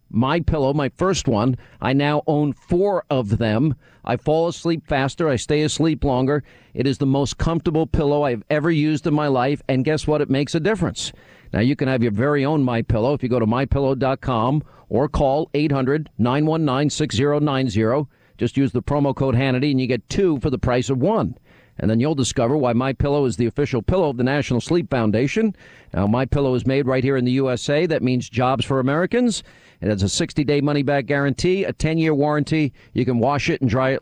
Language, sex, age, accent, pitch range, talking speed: English, male, 50-69, American, 125-155 Hz, 205 wpm